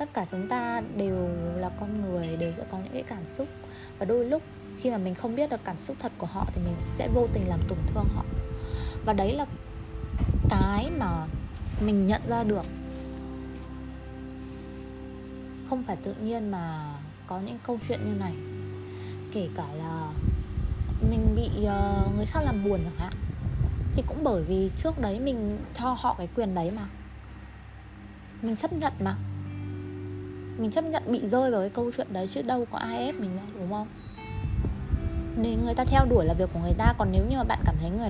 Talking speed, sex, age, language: 190 wpm, female, 20-39, Vietnamese